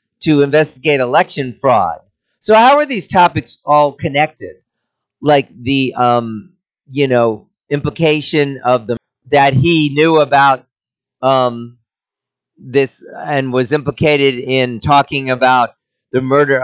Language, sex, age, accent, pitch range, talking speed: English, male, 40-59, American, 125-150 Hz, 120 wpm